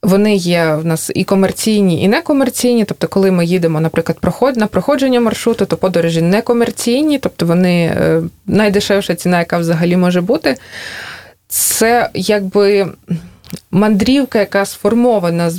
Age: 20-39